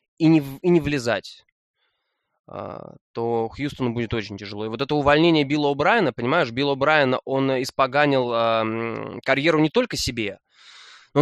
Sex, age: male, 20-39